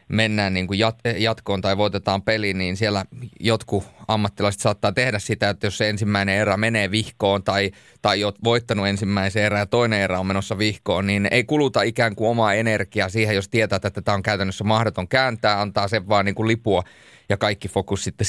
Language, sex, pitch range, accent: Finnish, male, 100-125 Hz, native